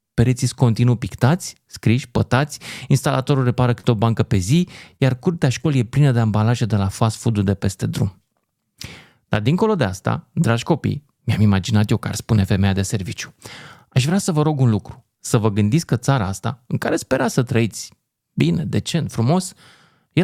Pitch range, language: 110-145 Hz, Romanian